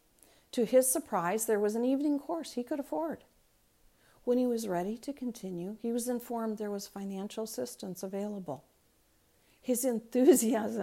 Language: English